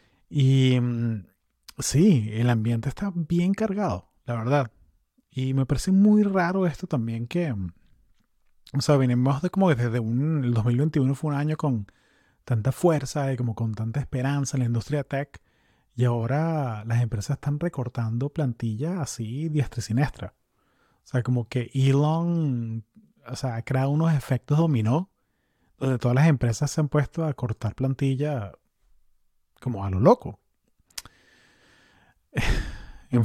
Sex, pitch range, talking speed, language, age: male, 115-145 Hz, 145 wpm, Spanish, 30-49